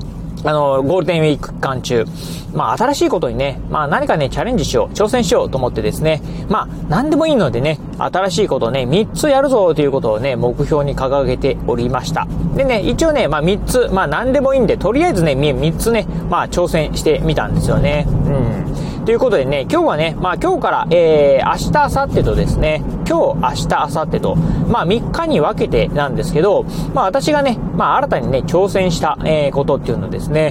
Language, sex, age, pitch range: Japanese, male, 40-59, 140-210 Hz